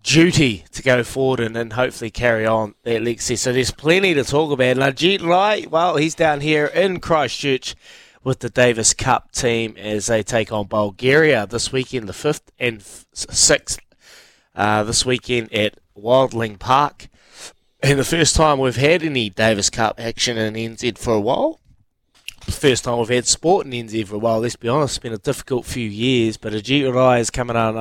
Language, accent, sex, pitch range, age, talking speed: English, Australian, male, 115-135 Hz, 20-39, 190 wpm